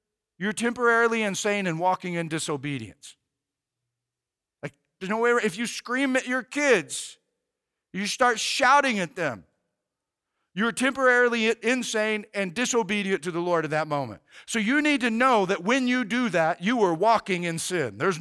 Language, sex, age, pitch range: English, male, 50-69, 175-240 Hz